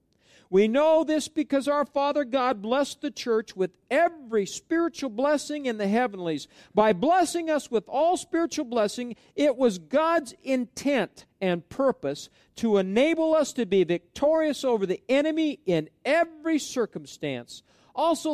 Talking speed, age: 140 wpm, 50-69